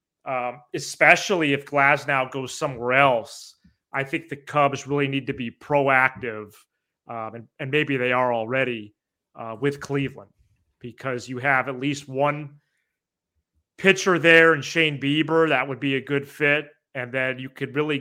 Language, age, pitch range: English, 30-49, 125-155 Hz